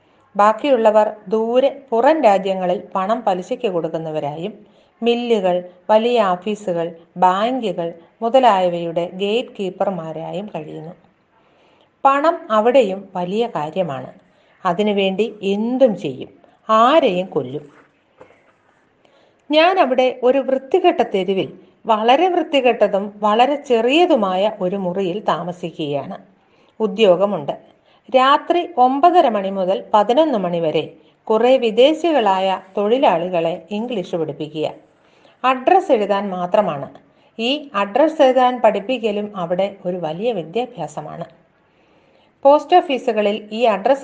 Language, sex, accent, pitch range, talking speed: Malayalam, female, native, 180-255 Hz, 85 wpm